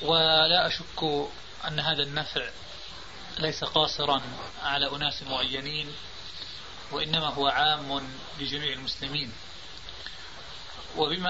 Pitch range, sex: 140-160 Hz, male